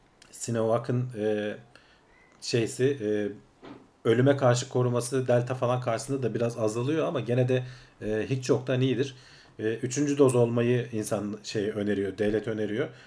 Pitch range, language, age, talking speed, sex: 110-130 Hz, Turkish, 40-59, 140 wpm, male